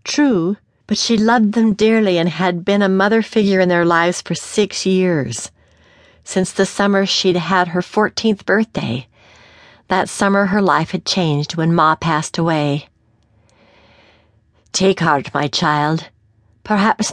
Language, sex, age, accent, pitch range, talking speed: English, female, 60-79, American, 135-200 Hz, 145 wpm